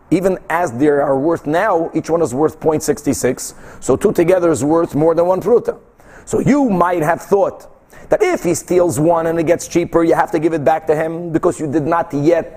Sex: male